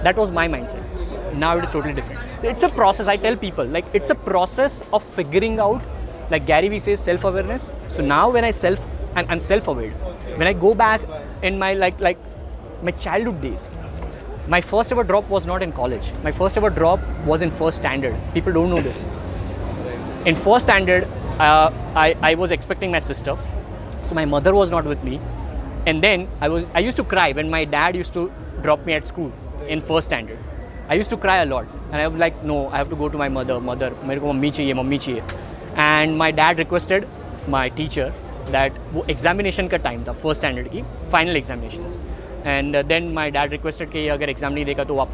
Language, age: English, 20-39